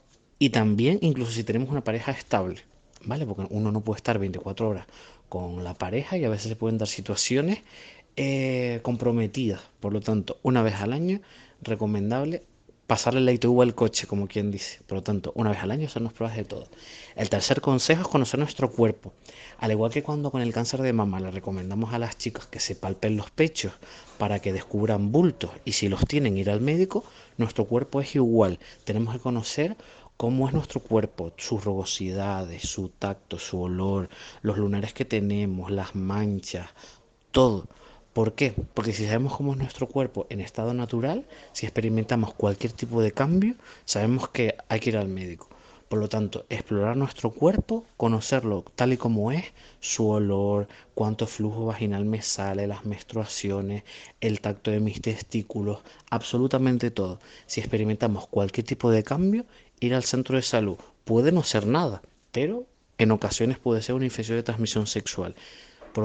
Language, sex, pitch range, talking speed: Spanish, male, 105-125 Hz, 175 wpm